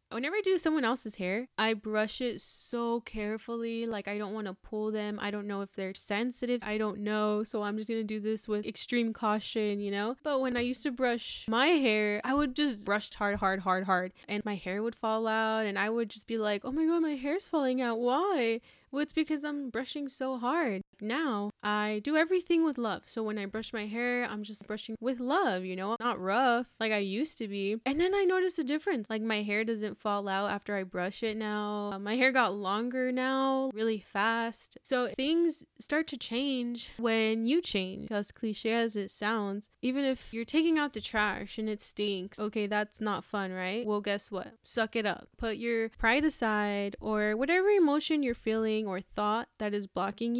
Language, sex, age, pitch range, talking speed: English, female, 10-29, 210-255 Hz, 215 wpm